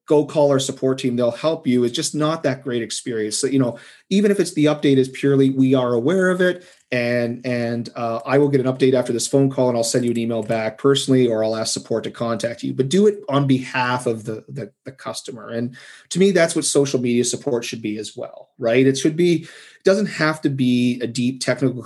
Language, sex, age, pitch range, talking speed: English, male, 30-49, 115-140 Hz, 245 wpm